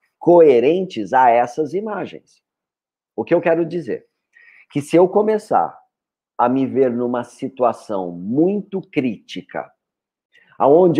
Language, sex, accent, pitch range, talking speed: Portuguese, male, Brazilian, 130-195 Hz, 115 wpm